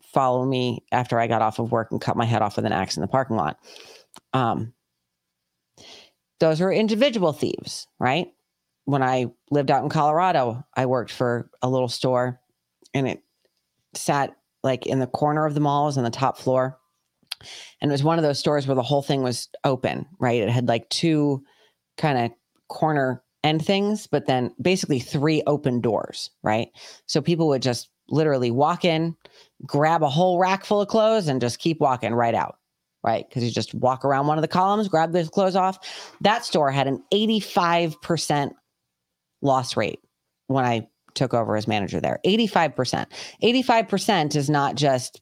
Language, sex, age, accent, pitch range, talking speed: English, female, 30-49, American, 120-160 Hz, 180 wpm